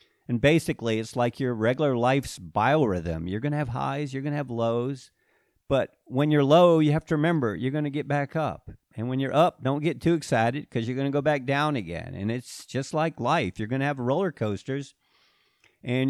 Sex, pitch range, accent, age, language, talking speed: male, 105-145 Hz, American, 50-69, English, 225 wpm